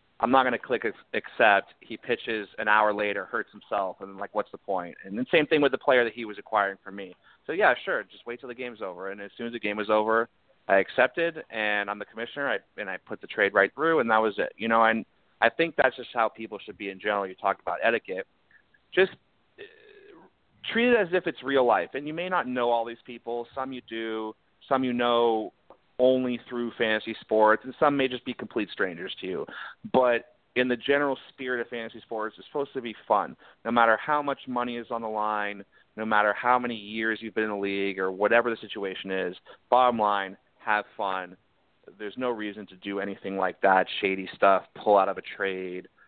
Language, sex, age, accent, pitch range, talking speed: English, male, 30-49, American, 100-125 Hz, 225 wpm